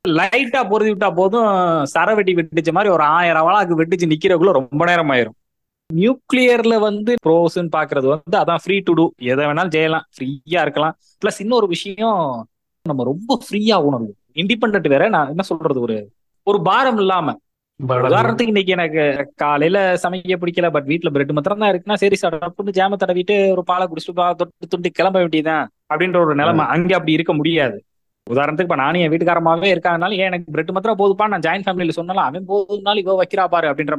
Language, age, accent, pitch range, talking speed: Tamil, 20-39, native, 155-200 Hz, 170 wpm